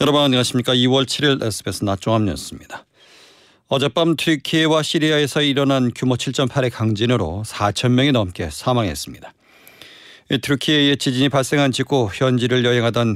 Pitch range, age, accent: 110-140 Hz, 40-59, native